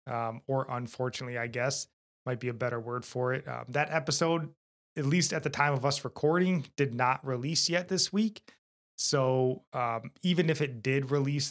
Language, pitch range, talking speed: English, 125-150 Hz, 190 wpm